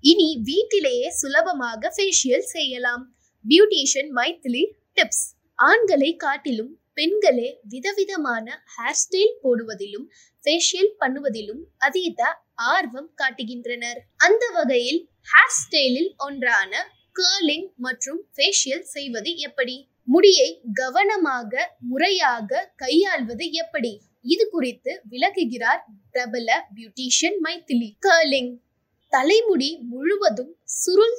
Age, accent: 20-39, native